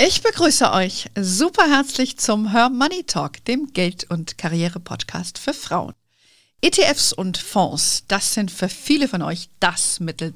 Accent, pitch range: German, 170-230 Hz